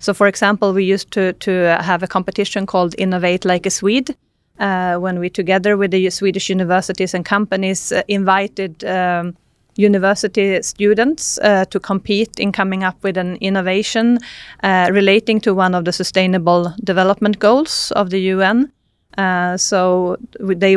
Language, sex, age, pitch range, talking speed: Vietnamese, female, 30-49, 185-205 Hz, 155 wpm